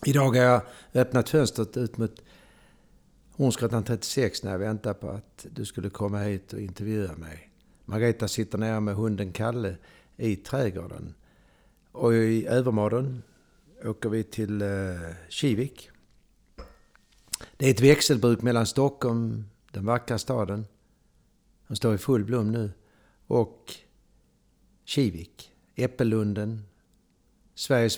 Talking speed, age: 120 wpm, 60-79